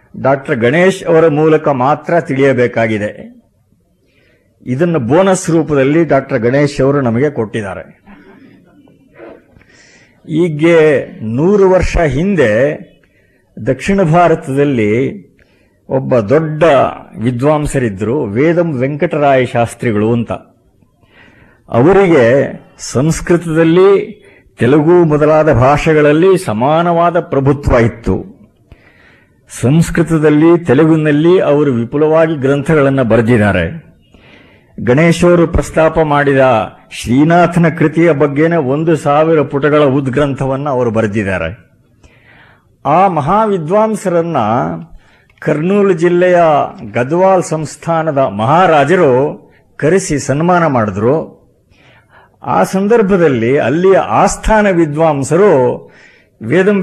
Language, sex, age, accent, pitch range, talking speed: Kannada, male, 50-69, native, 125-170 Hz, 75 wpm